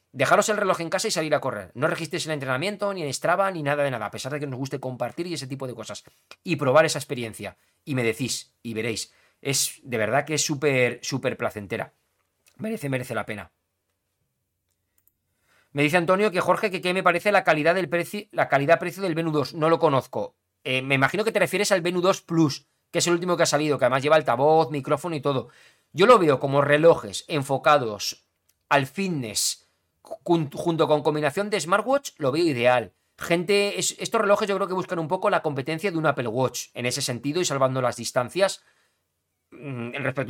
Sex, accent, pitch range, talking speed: male, Spanish, 125-165 Hz, 205 wpm